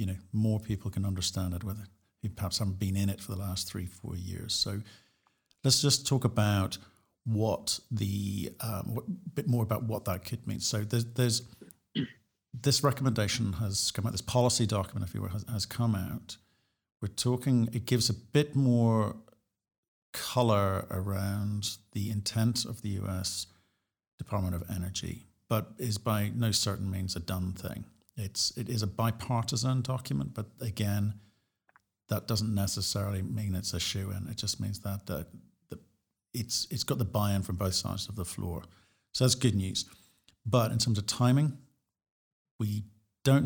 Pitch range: 95-115 Hz